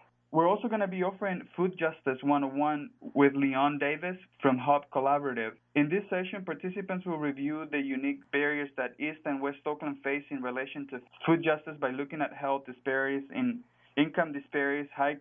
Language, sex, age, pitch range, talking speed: English, male, 20-39, 140-175 Hz, 170 wpm